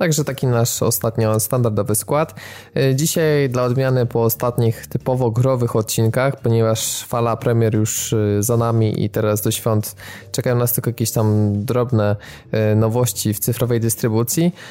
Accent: native